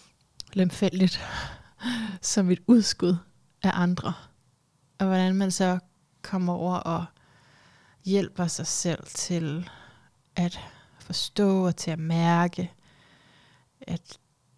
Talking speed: 100 wpm